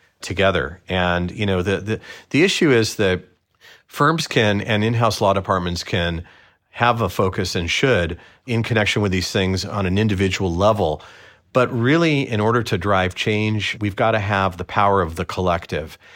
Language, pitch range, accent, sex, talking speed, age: English, 90-115 Hz, American, male, 175 wpm, 40-59